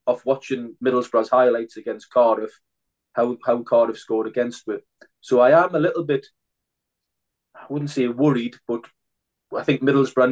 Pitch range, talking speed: 115-135 Hz, 150 wpm